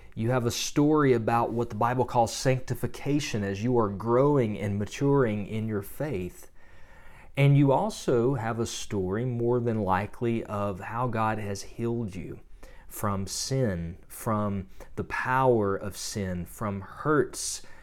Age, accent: 40-59, American